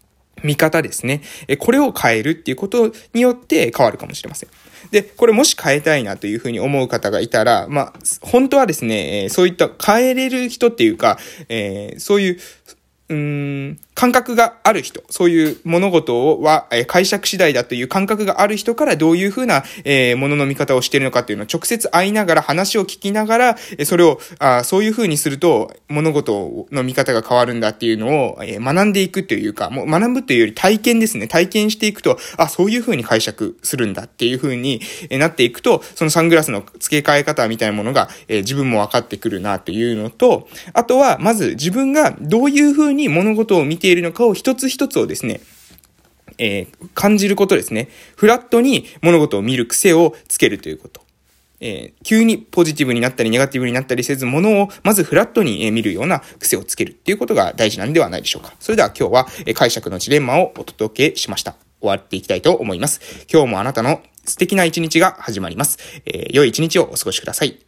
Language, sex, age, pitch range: Japanese, male, 20-39, 130-220 Hz